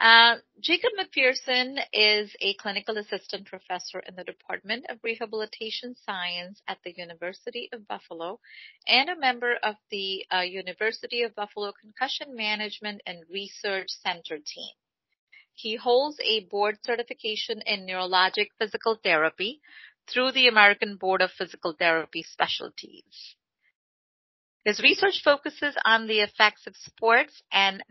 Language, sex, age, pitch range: English, female, 40-59, 190-245 Hz